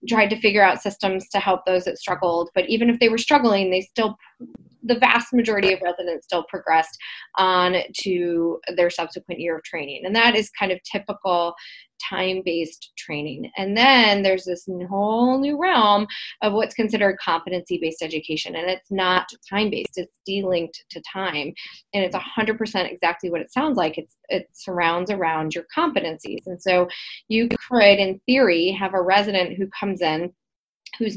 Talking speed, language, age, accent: 170 wpm, English, 20-39, American